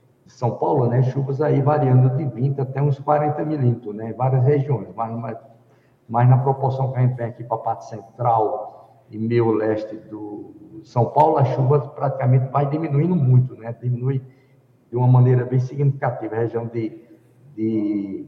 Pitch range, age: 115-135 Hz, 60-79